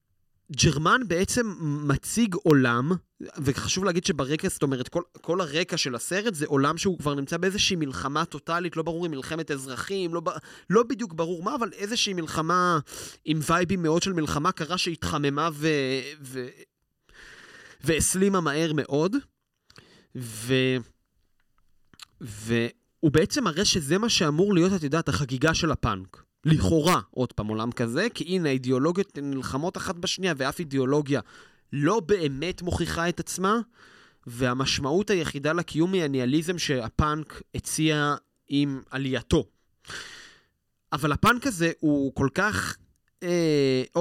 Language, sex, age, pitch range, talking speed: Hebrew, male, 30-49, 135-180 Hz, 125 wpm